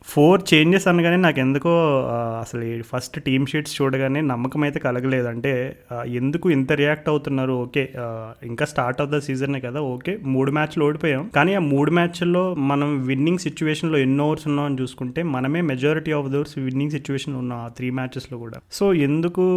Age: 30-49